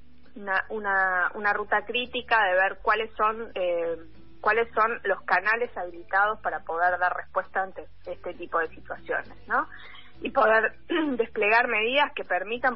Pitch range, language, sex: 185-240 Hz, Spanish, female